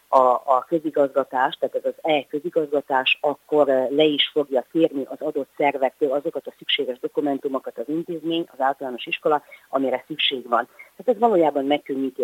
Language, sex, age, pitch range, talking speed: Hungarian, female, 30-49, 130-155 Hz, 140 wpm